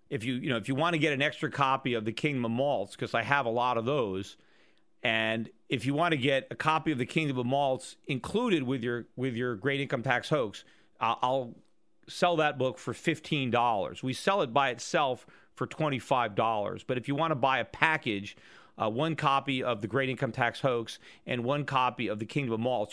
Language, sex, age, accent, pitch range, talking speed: English, male, 40-59, American, 115-145 Hz, 230 wpm